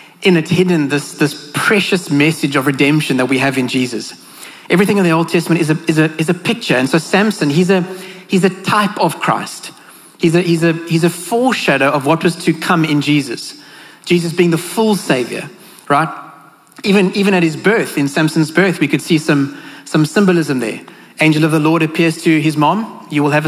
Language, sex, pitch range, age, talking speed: English, male, 145-180 Hz, 30-49, 210 wpm